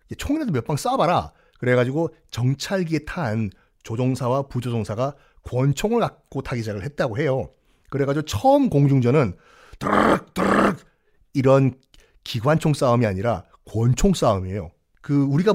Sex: male